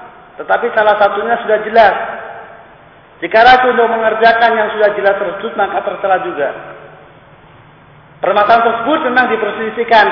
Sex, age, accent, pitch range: male, 40-59, native, 200-245 Hz